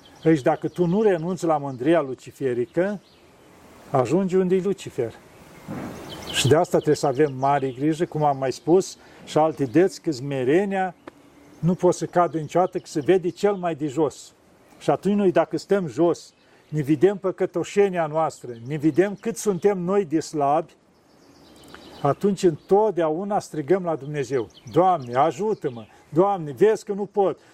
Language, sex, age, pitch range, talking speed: Romanian, male, 50-69, 165-210 Hz, 150 wpm